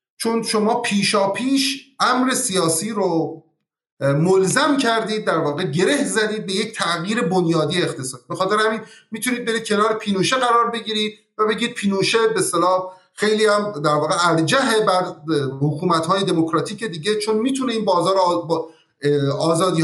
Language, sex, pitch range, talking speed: Persian, male, 170-230 Hz, 135 wpm